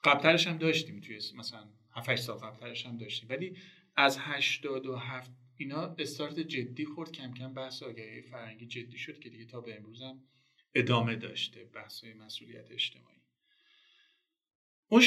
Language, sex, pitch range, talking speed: Persian, male, 120-165 Hz, 145 wpm